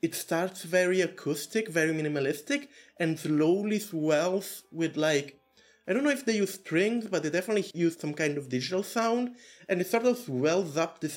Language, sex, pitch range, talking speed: English, male, 150-210 Hz, 185 wpm